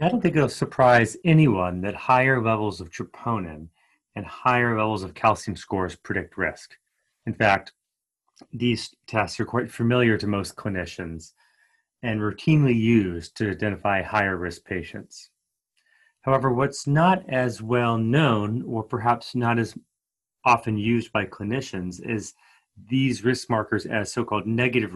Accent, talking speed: American, 140 wpm